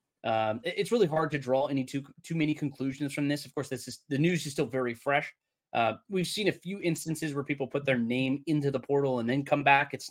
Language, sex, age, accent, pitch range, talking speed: English, male, 20-39, American, 125-155 Hz, 250 wpm